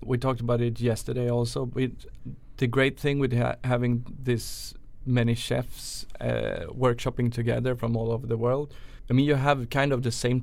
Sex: male